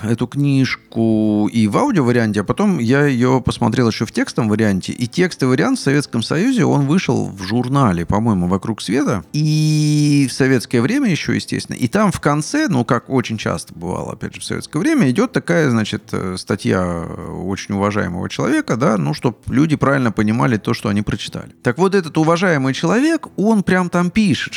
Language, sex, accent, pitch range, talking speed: Russian, male, native, 110-150 Hz, 180 wpm